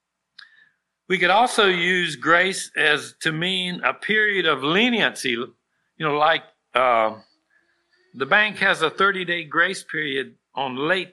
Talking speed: 135 wpm